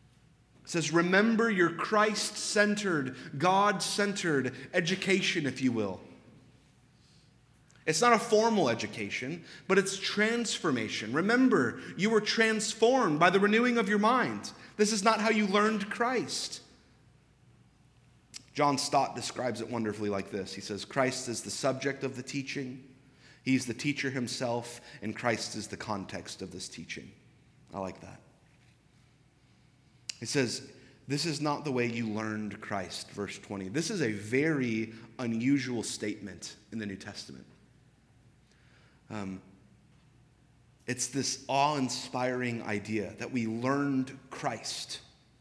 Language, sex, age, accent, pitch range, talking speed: English, male, 30-49, American, 120-185 Hz, 130 wpm